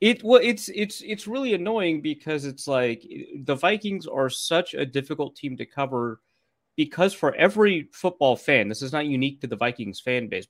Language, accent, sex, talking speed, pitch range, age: English, American, male, 190 wpm, 120-160 Hz, 30-49